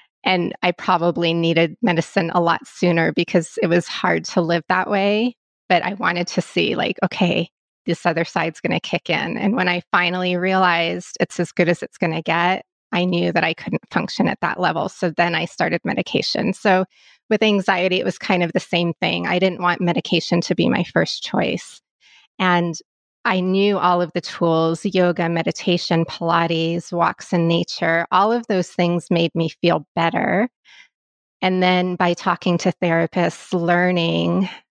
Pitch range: 170-185 Hz